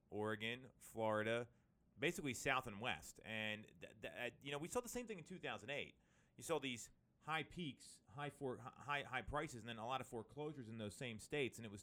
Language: English